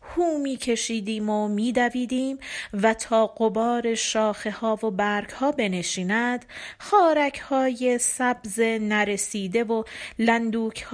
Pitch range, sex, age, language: 215-265 Hz, female, 40-59, Persian